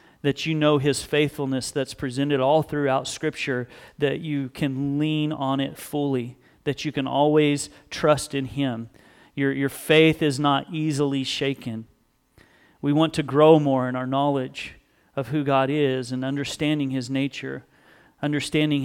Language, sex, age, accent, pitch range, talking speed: English, male, 40-59, American, 135-150 Hz, 155 wpm